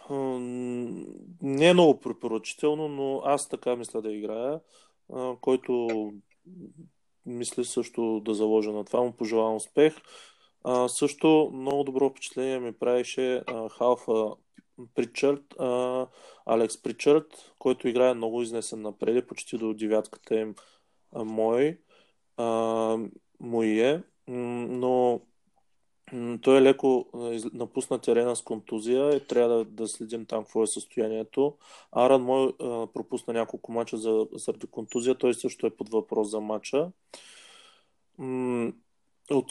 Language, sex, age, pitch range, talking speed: Bulgarian, male, 20-39, 115-130 Hz, 115 wpm